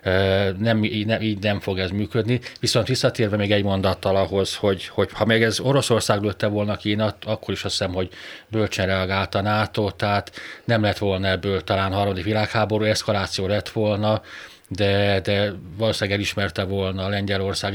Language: Hungarian